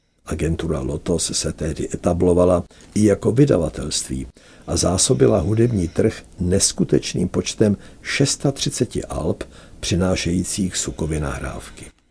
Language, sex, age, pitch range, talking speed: Czech, male, 60-79, 80-95 Hz, 95 wpm